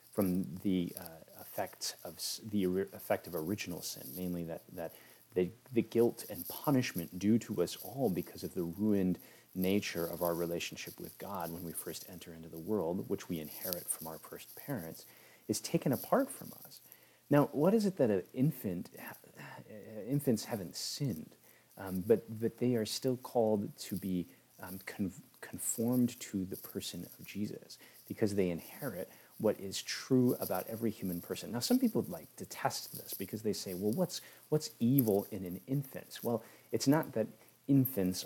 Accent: American